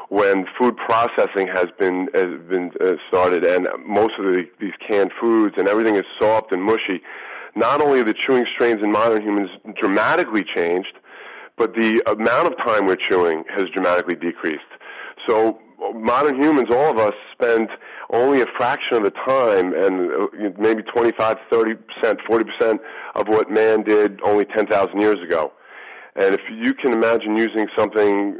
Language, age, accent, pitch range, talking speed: English, 40-59, American, 105-150 Hz, 160 wpm